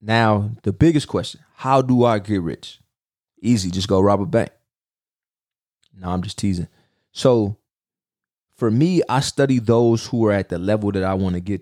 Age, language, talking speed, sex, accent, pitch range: 20-39, English, 180 wpm, male, American, 95-120 Hz